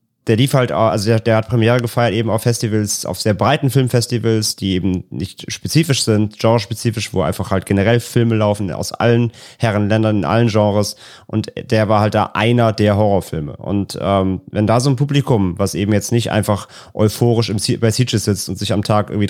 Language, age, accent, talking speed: German, 30-49, German, 200 wpm